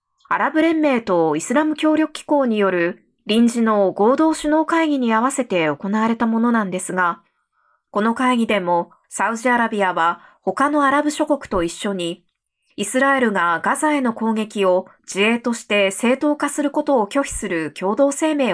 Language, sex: Japanese, female